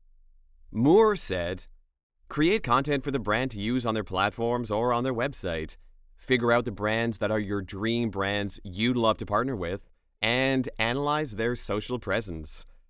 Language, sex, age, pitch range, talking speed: English, male, 30-49, 95-120 Hz, 165 wpm